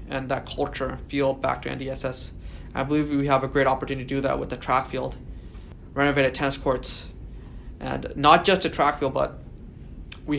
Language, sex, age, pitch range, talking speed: English, male, 20-39, 135-150 Hz, 190 wpm